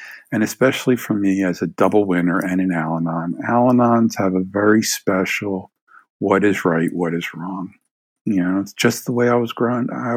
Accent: American